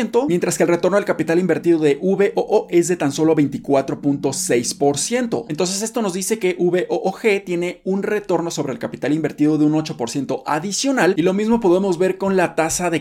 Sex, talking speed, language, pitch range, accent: male, 185 wpm, Spanish, 125-170 Hz, Mexican